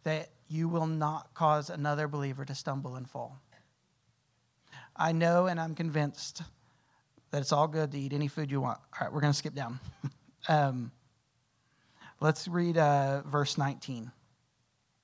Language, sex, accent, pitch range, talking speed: English, male, American, 140-165 Hz, 155 wpm